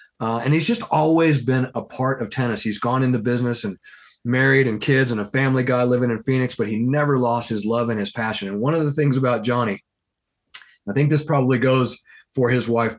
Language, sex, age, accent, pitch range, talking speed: English, male, 40-59, American, 115-135 Hz, 225 wpm